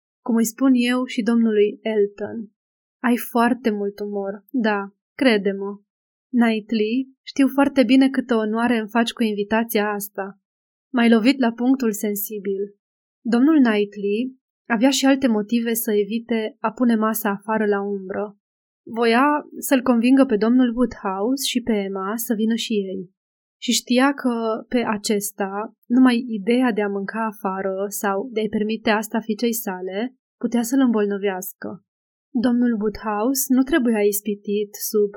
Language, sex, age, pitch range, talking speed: Romanian, female, 20-39, 205-245 Hz, 140 wpm